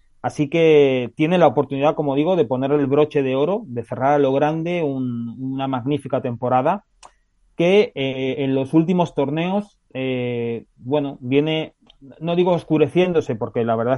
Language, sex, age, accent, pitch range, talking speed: Spanish, male, 30-49, Spanish, 125-145 Hz, 160 wpm